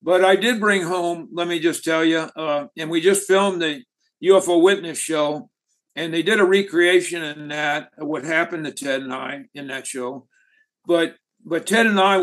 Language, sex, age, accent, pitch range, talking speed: English, male, 60-79, American, 160-195 Hz, 195 wpm